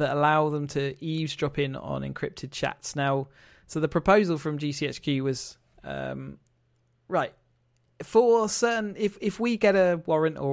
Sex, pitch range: male, 130-155 Hz